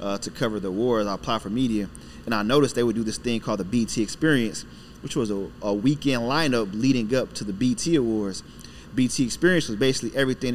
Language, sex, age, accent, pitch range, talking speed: English, male, 30-49, American, 105-125 Hz, 215 wpm